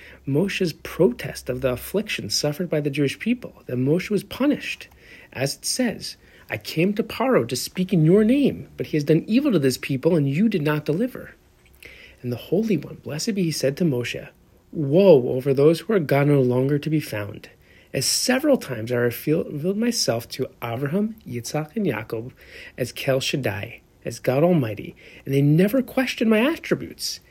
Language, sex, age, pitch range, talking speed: English, male, 40-59, 130-215 Hz, 180 wpm